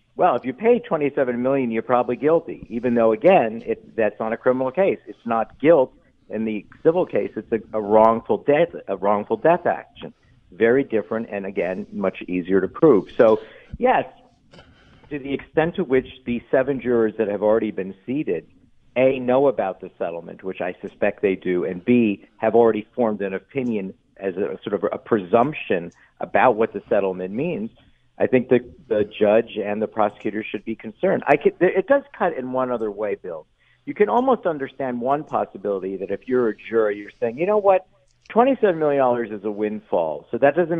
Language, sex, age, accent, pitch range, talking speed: English, male, 50-69, American, 105-135 Hz, 190 wpm